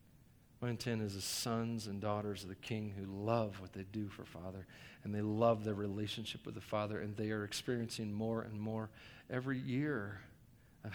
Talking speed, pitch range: 190 wpm, 105-135 Hz